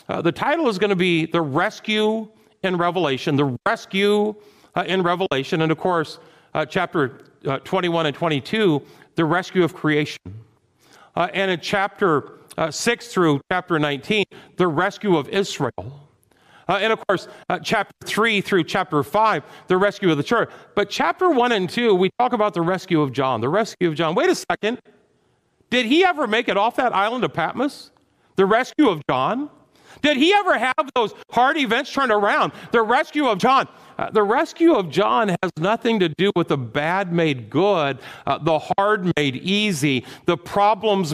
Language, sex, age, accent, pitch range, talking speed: English, male, 50-69, American, 150-210 Hz, 180 wpm